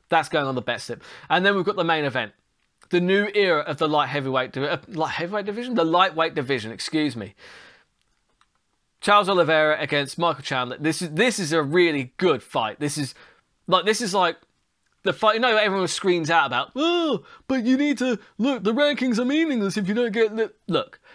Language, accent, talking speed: English, British, 205 wpm